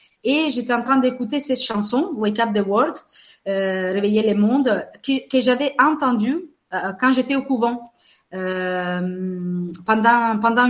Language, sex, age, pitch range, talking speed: French, female, 30-49, 195-250 Hz, 155 wpm